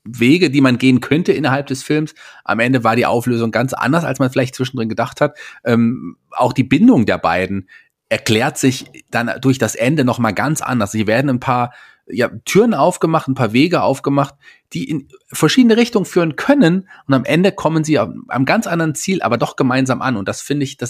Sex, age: male, 30-49